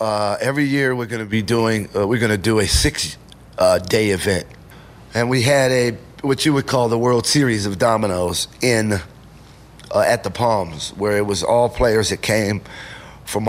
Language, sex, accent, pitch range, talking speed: English, male, American, 95-115 Hz, 190 wpm